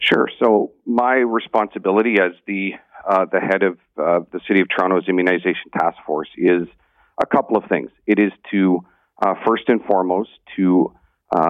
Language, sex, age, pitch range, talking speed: English, male, 40-59, 90-105 Hz, 165 wpm